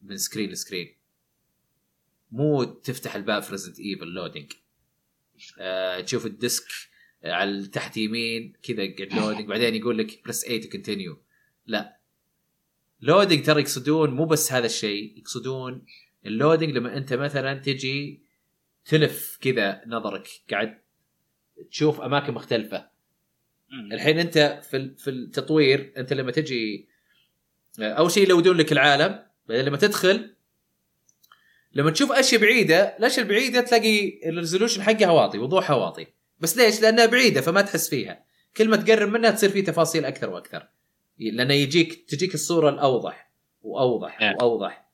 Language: Arabic